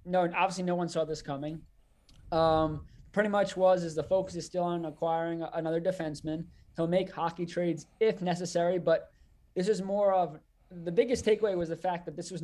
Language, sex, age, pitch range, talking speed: English, male, 20-39, 150-185 Hz, 200 wpm